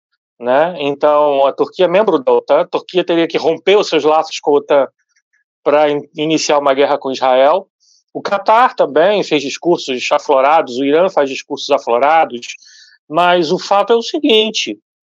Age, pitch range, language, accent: 40-59, 155-205 Hz, Portuguese, Brazilian